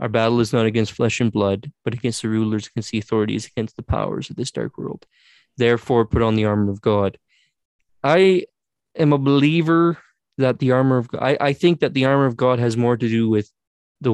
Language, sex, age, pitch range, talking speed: English, male, 20-39, 115-135 Hz, 215 wpm